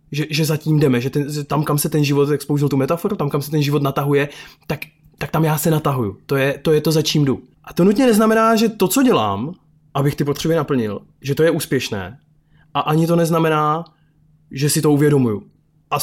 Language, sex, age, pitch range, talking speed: Czech, male, 20-39, 130-155 Hz, 230 wpm